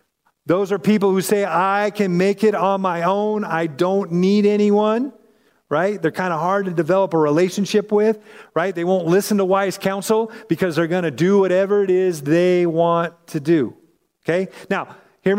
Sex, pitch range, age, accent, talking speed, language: male, 175-210 Hz, 40-59, American, 185 wpm, English